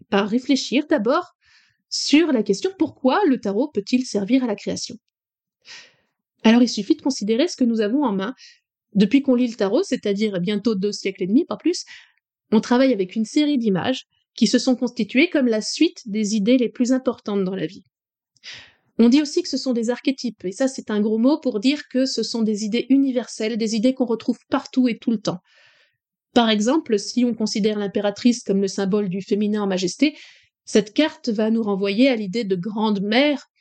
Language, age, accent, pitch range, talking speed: French, 20-39, French, 210-265 Hz, 200 wpm